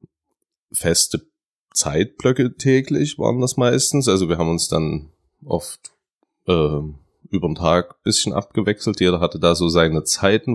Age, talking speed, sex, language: 30-49, 140 wpm, male, German